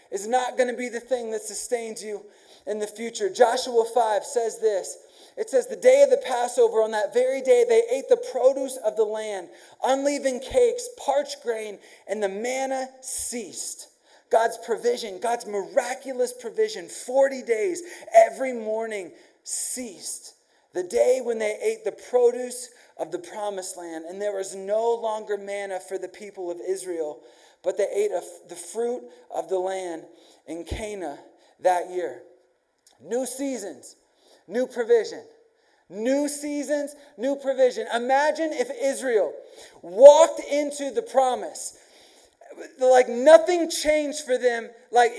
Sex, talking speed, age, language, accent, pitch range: male, 145 wpm, 30-49, English, American, 225-325 Hz